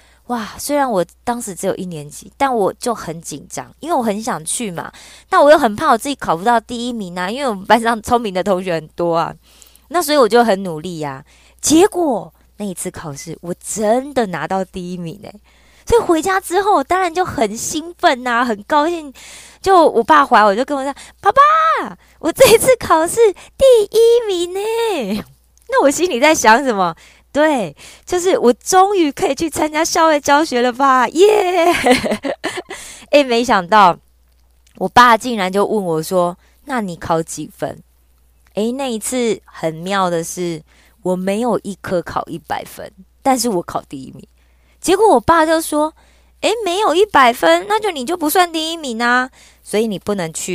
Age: 20-39